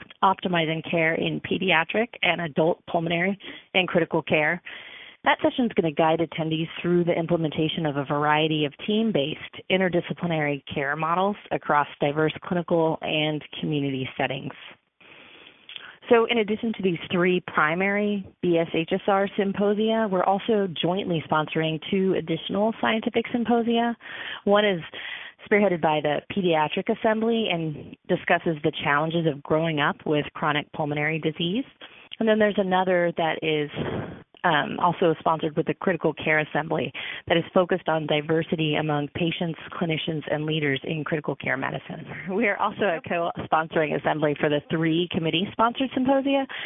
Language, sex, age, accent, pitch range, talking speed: English, female, 30-49, American, 155-195 Hz, 140 wpm